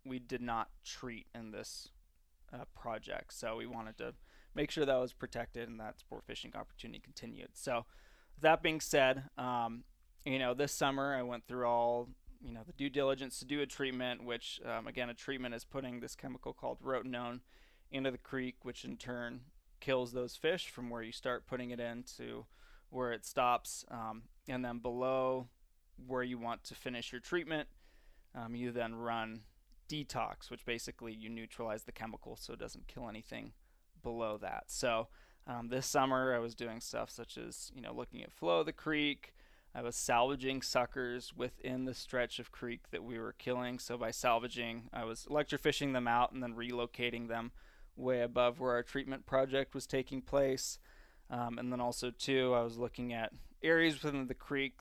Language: English